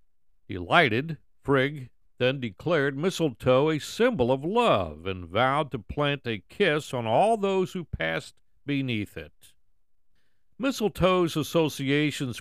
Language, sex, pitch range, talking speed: English, male, 110-165 Hz, 115 wpm